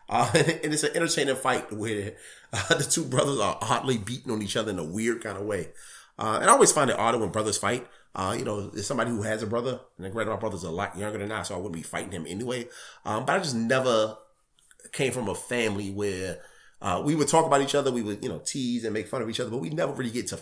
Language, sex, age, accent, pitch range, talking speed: English, male, 30-49, American, 100-125 Hz, 265 wpm